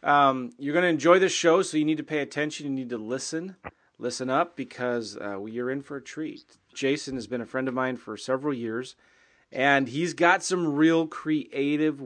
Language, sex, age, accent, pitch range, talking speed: English, male, 30-49, American, 120-150 Hz, 210 wpm